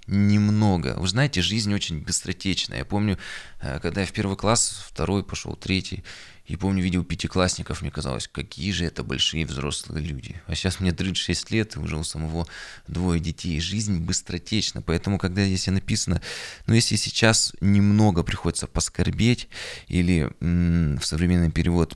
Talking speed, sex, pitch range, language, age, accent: 150 wpm, male, 80-100 Hz, Russian, 20-39, native